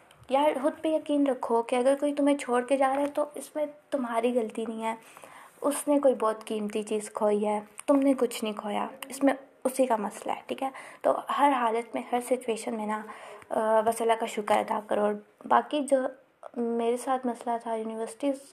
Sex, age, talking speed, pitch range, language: female, 20-39, 205 wpm, 230-280 Hz, Urdu